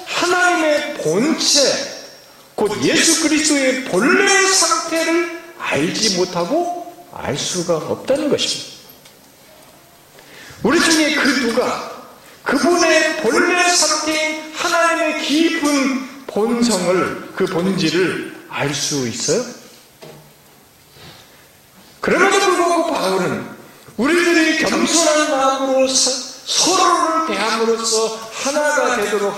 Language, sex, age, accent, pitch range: Korean, male, 40-59, native, 250-335 Hz